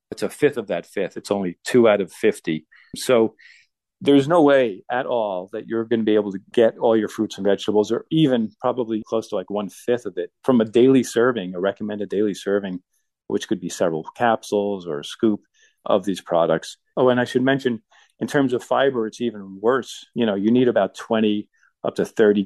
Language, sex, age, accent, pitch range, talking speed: English, male, 40-59, American, 95-115 Hz, 215 wpm